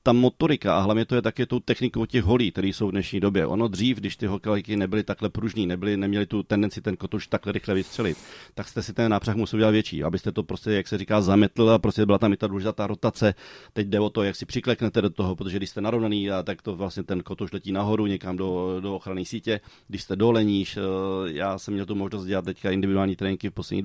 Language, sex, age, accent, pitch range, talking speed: Czech, male, 30-49, native, 95-110 Hz, 245 wpm